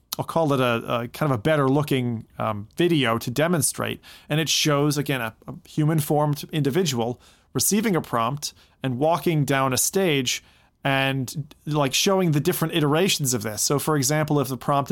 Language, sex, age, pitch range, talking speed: English, male, 30-49, 120-155 Hz, 180 wpm